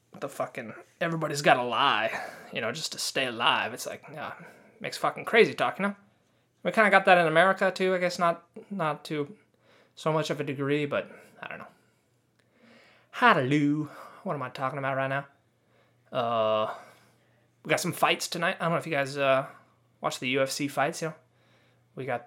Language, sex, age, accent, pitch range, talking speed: English, male, 20-39, American, 135-170 Hz, 190 wpm